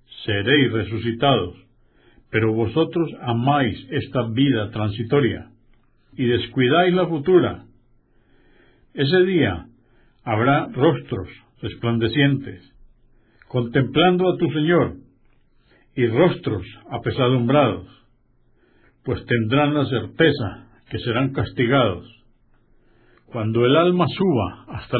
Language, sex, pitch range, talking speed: Spanish, male, 115-140 Hz, 85 wpm